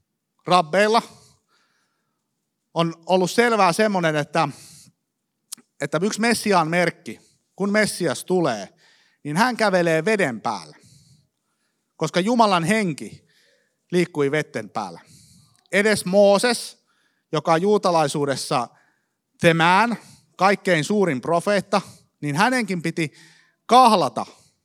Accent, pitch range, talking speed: native, 155-210 Hz, 90 wpm